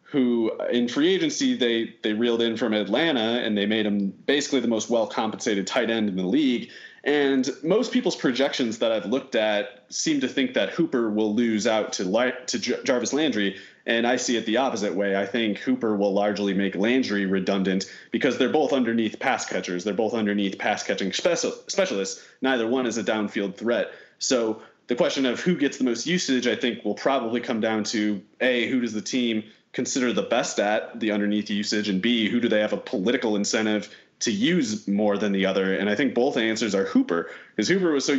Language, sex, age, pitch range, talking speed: English, male, 30-49, 105-130 Hz, 210 wpm